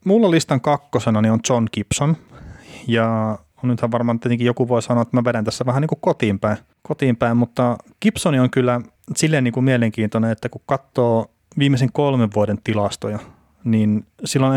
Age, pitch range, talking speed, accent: 30-49, 105-125 Hz, 165 wpm, native